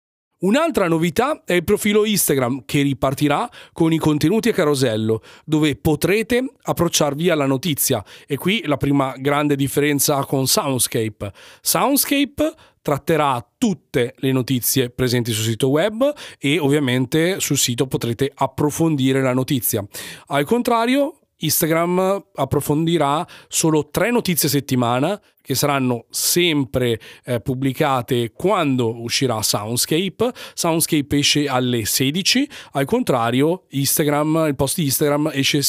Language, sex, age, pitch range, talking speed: Italian, male, 40-59, 135-170 Hz, 120 wpm